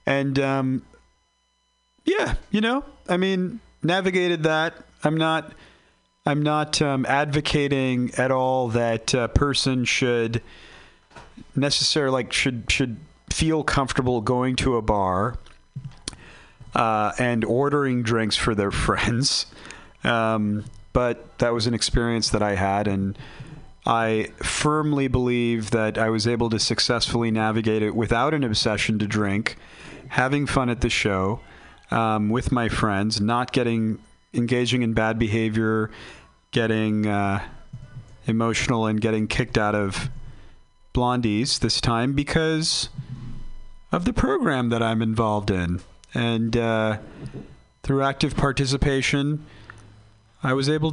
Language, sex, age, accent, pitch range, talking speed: English, male, 40-59, American, 110-140 Hz, 125 wpm